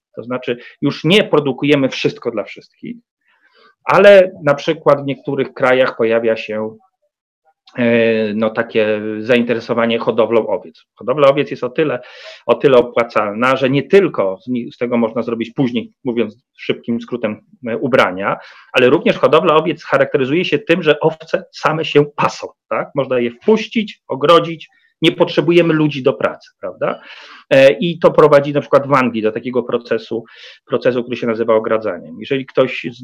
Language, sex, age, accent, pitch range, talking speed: Polish, male, 40-59, native, 120-170 Hz, 150 wpm